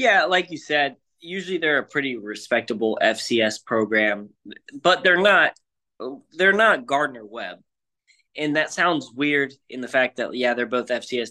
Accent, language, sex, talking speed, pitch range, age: American, English, male, 160 wpm, 115-145 Hz, 20-39